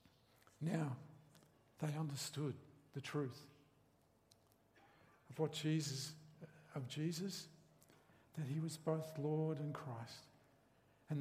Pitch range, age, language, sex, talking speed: 130-165 Hz, 50-69, English, male, 95 wpm